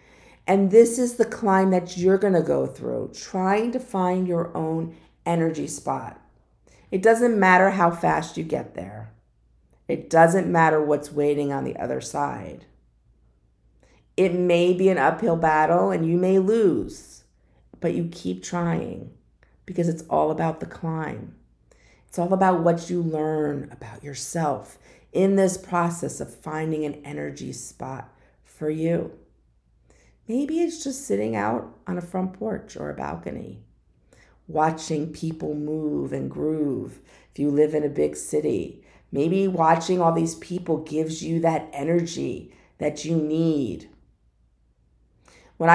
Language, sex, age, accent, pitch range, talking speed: English, female, 50-69, American, 140-180 Hz, 145 wpm